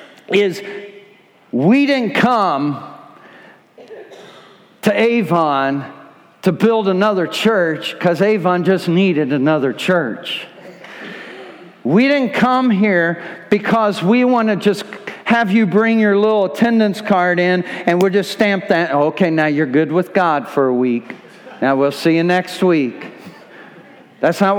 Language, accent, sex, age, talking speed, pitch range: English, American, male, 50-69, 135 wpm, 185-255 Hz